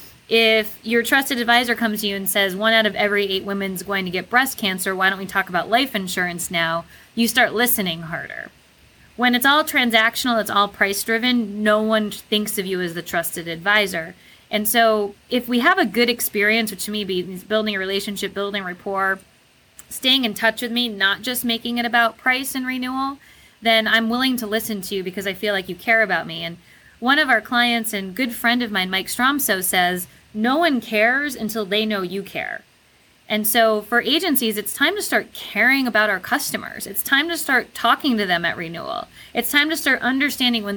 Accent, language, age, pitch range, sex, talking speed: American, English, 20-39, 195-245 Hz, female, 210 wpm